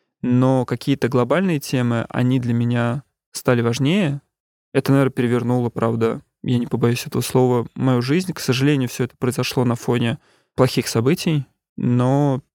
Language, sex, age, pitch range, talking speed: Russian, male, 20-39, 120-140 Hz, 145 wpm